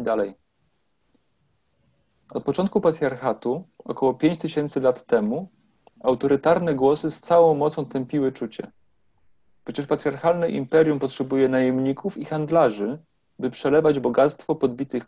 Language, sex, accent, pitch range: Polish, male, native, 130-155 Hz